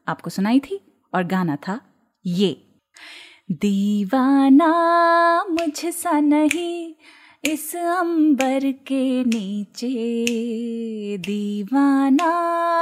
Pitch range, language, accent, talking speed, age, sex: 265-340 Hz, Hindi, native, 75 wpm, 20-39, female